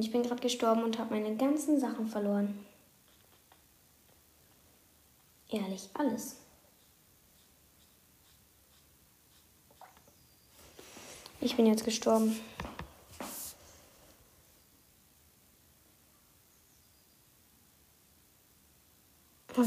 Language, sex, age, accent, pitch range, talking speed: English, female, 20-39, German, 205-235 Hz, 50 wpm